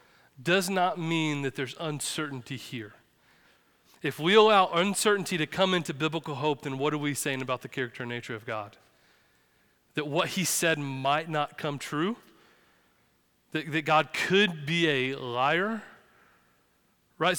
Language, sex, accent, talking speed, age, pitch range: English, male, American, 150 wpm, 30-49, 140-185 Hz